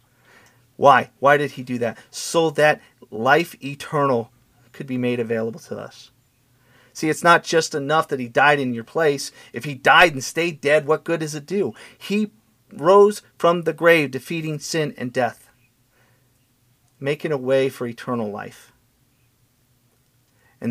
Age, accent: 40-59, American